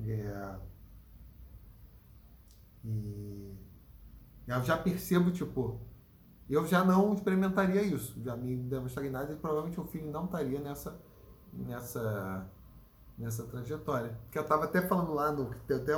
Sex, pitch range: male, 110-155 Hz